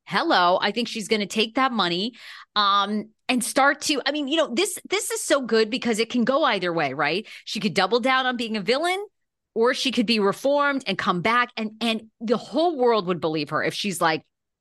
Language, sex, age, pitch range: English, female, 30-49, 200-280 Hz